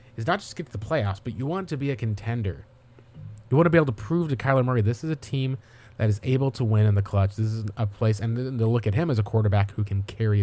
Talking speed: 295 wpm